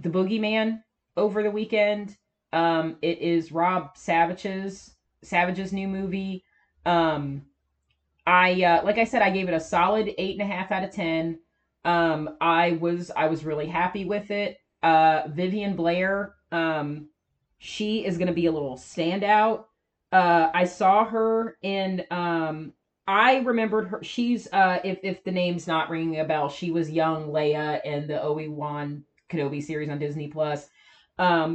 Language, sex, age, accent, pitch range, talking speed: English, female, 30-49, American, 160-195 Hz, 160 wpm